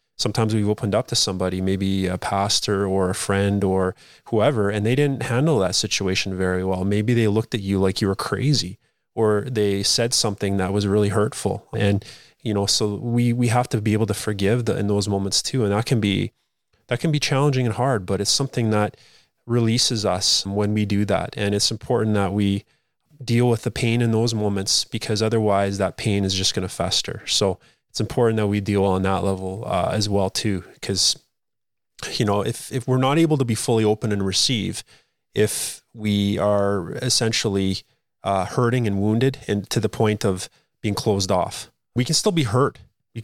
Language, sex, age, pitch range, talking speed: English, male, 20-39, 100-120 Hz, 205 wpm